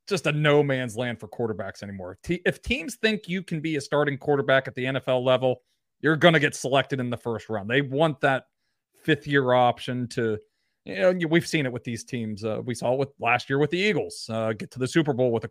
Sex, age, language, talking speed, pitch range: male, 30-49, English, 245 wpm, 125-170 Hz